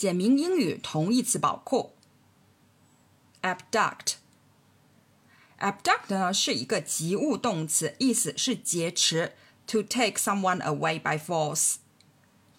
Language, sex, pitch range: Chinese, female, 145-205 Hz